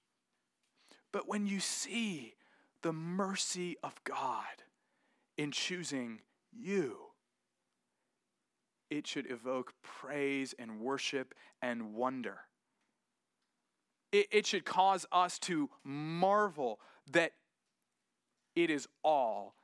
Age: 30-49